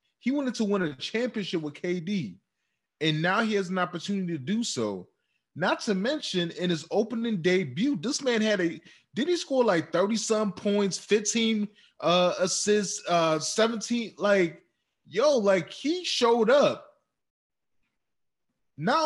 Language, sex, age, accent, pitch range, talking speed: English, male, 20-39, American, 130-200 Hz, 150 wpm